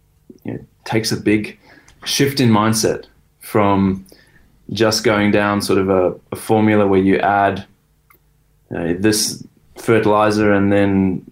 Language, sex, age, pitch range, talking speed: English, male, 20-39, 95-110 Hz, 135 wpm